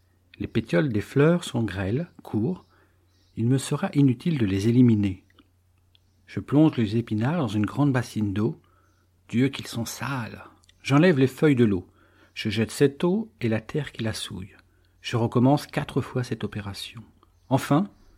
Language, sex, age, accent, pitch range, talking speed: French, male, 50-69, French, 95-135 Hz, 160 wpm